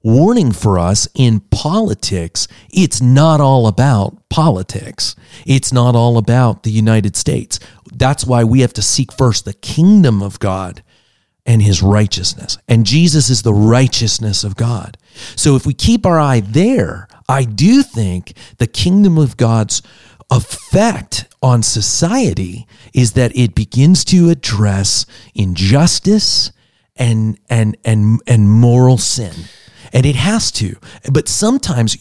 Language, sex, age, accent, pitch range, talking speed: English, male, 40-59, American, 105-135 Hz, 140 wpm